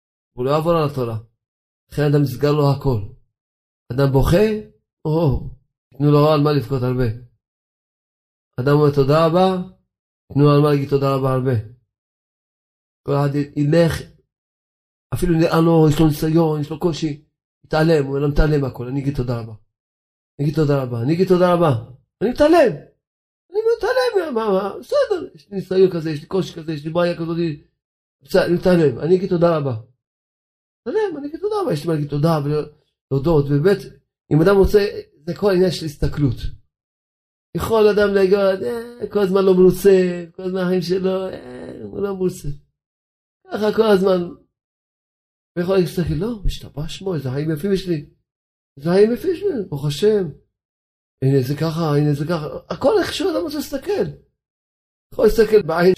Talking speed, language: 160 wpm, Hebrew